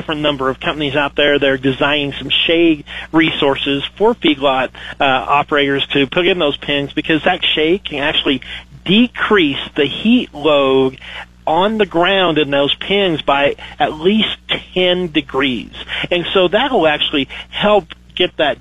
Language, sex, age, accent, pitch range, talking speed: English, male, 40-59, American, 140-165 Hz, 150 wpm